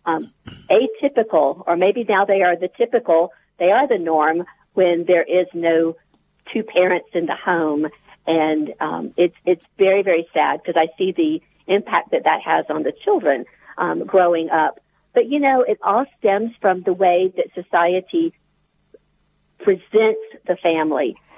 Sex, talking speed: female, 160 wpm